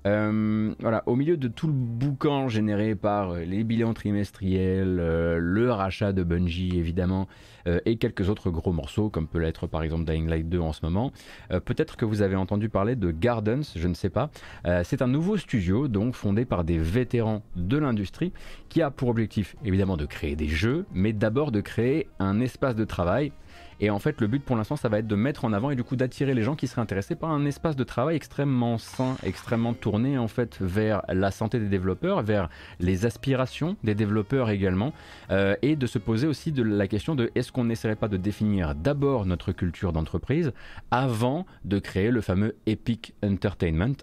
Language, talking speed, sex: French, 205 wpm, male